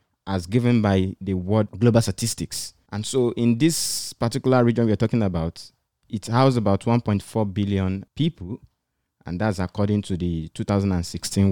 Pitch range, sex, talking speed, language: 90-115 Hz, male, 170 wpm, Hebrew